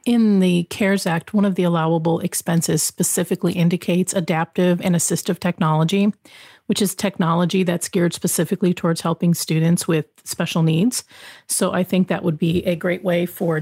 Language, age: English, 40-59